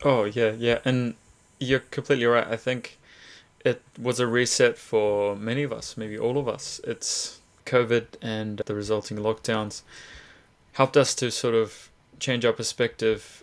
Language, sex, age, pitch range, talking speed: English, male, 20-39, 105-120 Hz, 155 wpm